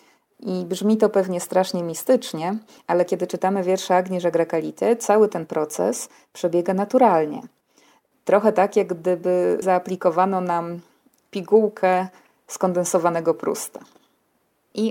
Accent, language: native, Polish